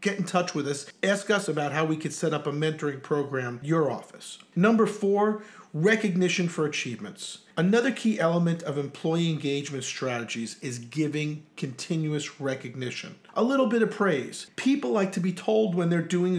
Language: English